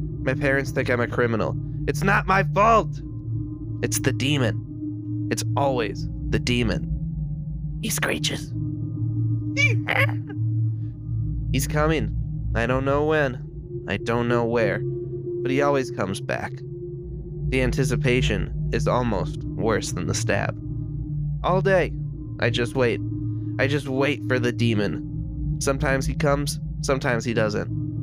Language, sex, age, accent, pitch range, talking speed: English, male, 20-39, American, 115-150 Hz, 125 wpm